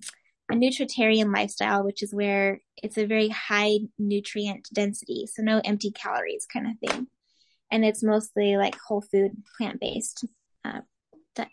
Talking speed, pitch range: 145 wpm, 210-240 Hz